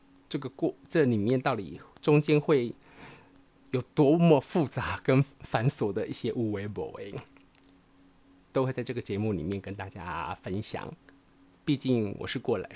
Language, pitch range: Chinese, 110-150 Hz